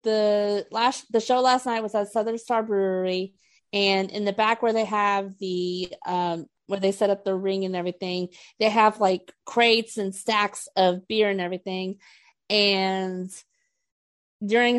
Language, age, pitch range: English, 30-49, 170-210 Hz